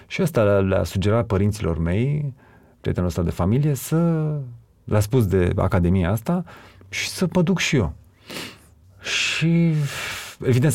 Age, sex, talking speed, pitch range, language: 30-49, male, 130 wpm, 95-130 Hz, Romanian